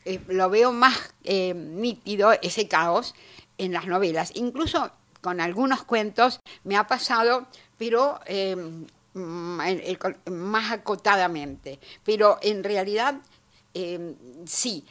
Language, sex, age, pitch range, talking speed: Spanish, female, 60-79, 180-235 Hz, 110 wpm